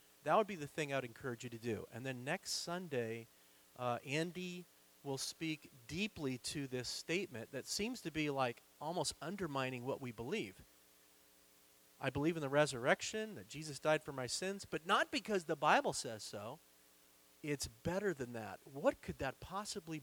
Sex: male